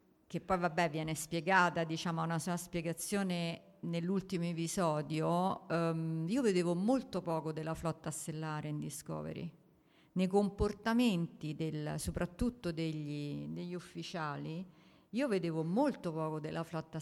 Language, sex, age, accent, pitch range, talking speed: Italian, female, 50-69, native, 165-195 Hz, 120 wpm